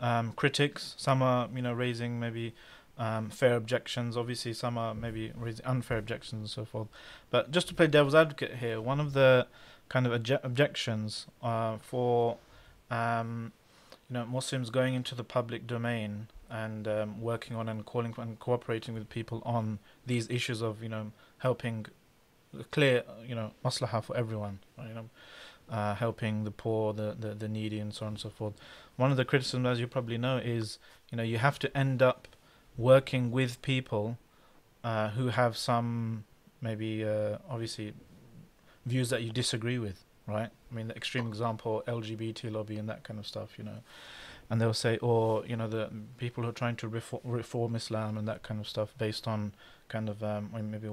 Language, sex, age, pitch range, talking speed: English, male, 20-39, 110-125 Hz, 185 wpm